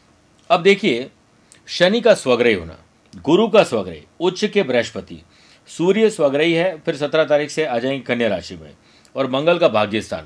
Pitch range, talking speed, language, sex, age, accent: 125-170 Hz, 170 wpm, Hindi, male, 50-69, native